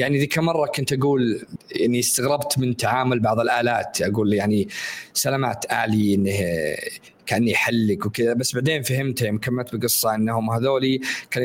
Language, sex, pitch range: Arabic, male, 115-135 Hz